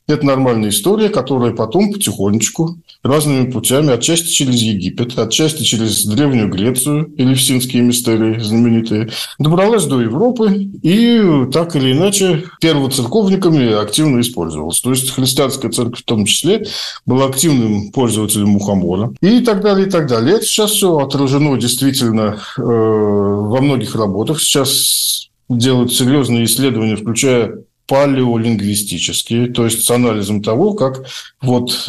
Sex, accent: male, native